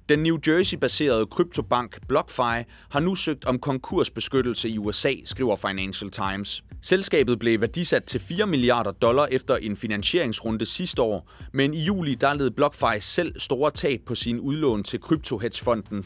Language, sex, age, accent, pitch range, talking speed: Danish, male, 30-49, native, 105-145 Hz, 150 wpm